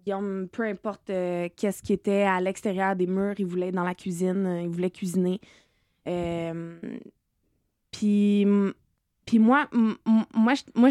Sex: female